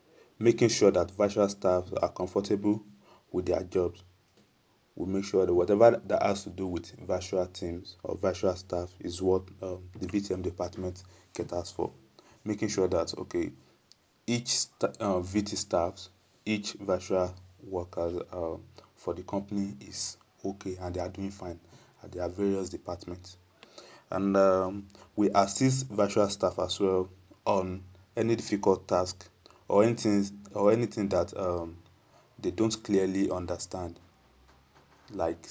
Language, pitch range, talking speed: English, 90-100 Hz, 140 wpm